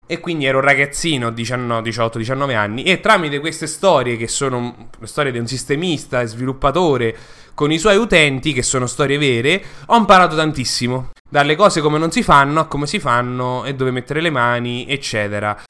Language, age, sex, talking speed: English, 20-39, male, 180 wpm